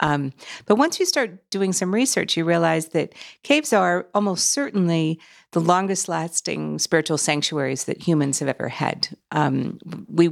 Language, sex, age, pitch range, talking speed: English, female, 50-69, 155-200 Hz, 155 wpm